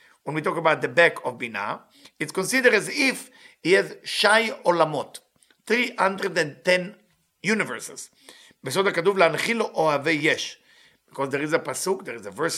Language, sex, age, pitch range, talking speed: English, male, 50-69, 155-225 Hz, 120 wpm